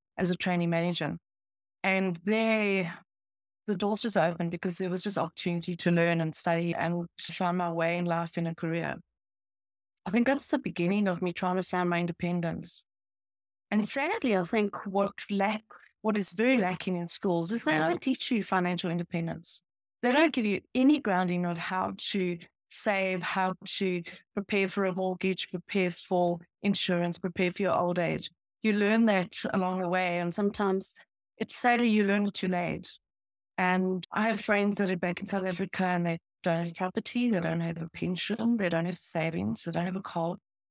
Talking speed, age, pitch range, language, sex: 185 wpm, 20-39, 175-205 Hz, English, female